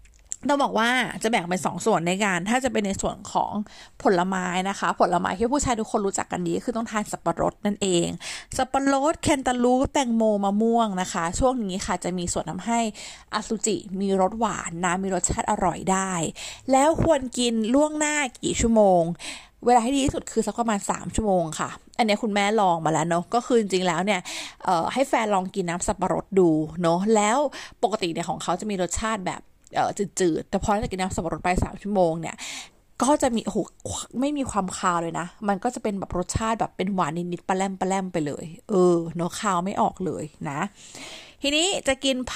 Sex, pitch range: female, 185-245 Hz